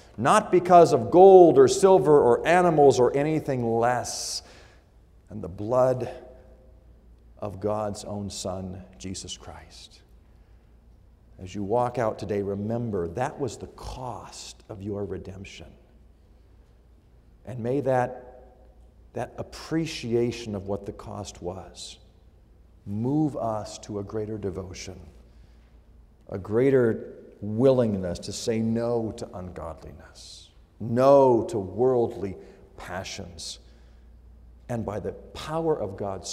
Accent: American